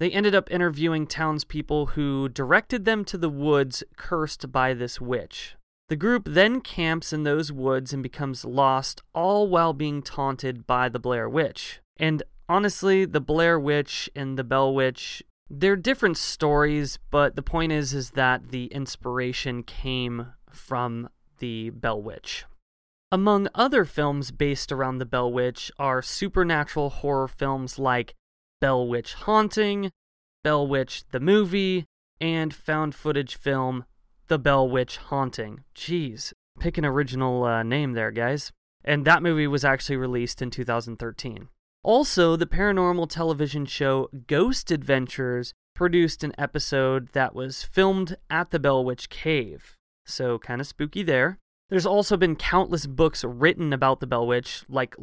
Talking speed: 150 wpm